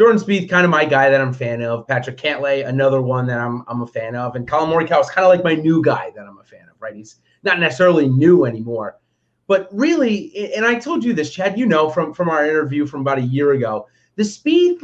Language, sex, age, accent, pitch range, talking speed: English, male, 30-49, American, 130-195 Hz, 255 wpm